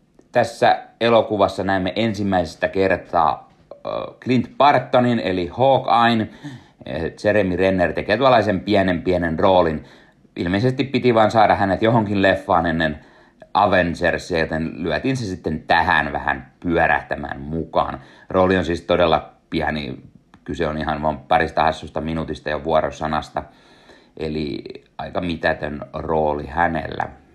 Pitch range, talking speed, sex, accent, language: 80-115 Hz, 110 wpm, male, native, Finnish